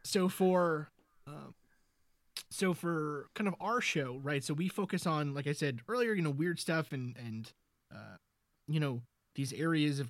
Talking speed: 180 wpm